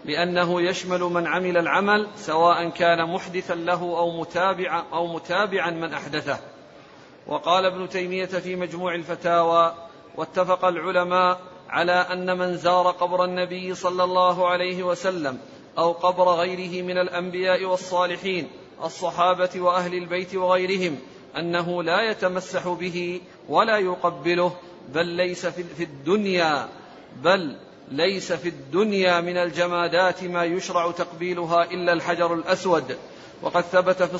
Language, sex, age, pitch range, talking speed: Arabic, male, 40-59, 170-180 Hz, 120 wpm